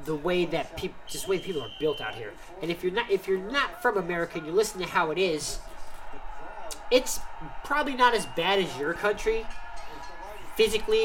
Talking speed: 180 wpm